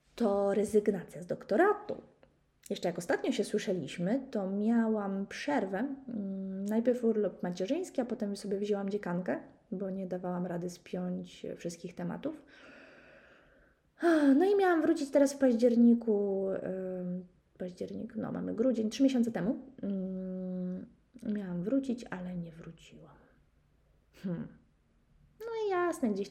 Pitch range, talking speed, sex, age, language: 185-235 Hz, 115 wpm, female, 20-39, Polish